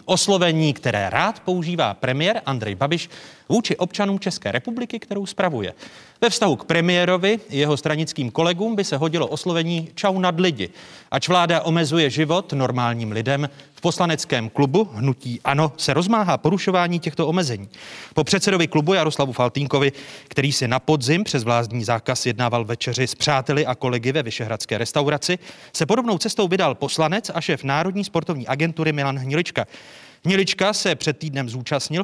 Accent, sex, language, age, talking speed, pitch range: native, male, Czech, 30-49, 150 wpm, 130-180 Hz